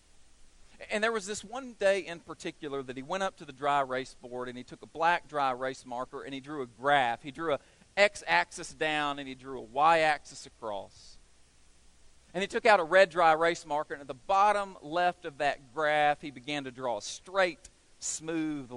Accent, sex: American, male